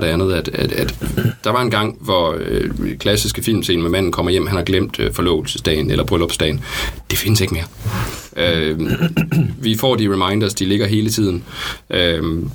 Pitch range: 95-115 Hz